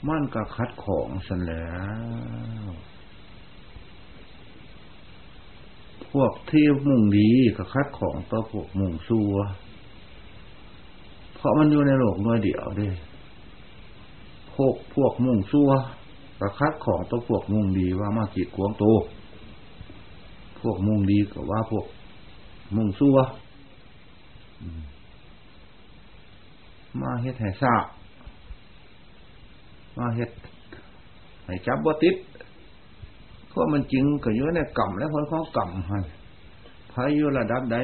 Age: 60-79